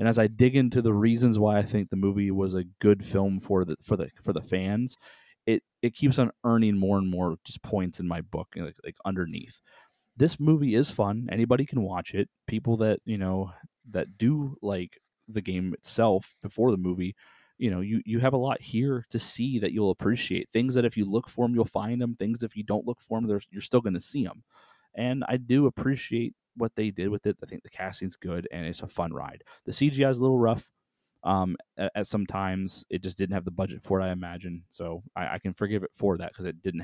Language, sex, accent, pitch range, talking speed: English, male, American, 95-125 Hz, 240 wpm